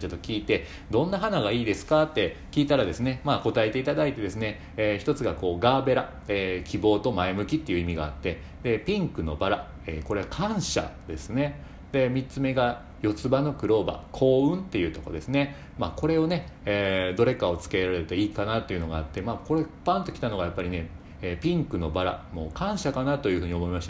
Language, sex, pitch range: Japanese, male, 90-125 Hz